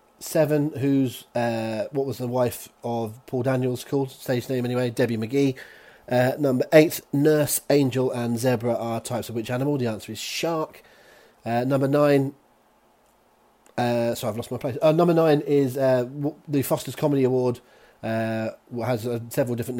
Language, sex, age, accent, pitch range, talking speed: English, male, 30-49, British, 115-135 Hz, 165 wpm